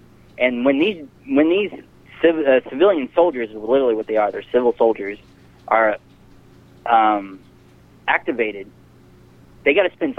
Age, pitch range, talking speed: 30-49, 115-145 Hz, 145 wpm